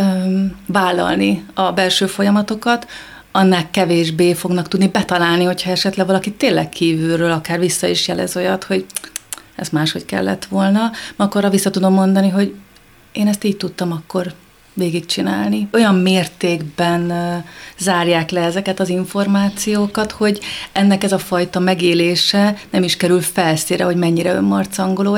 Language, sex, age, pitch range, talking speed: Hungarian, female, 30-49, 175-195 Hz, 130 wpm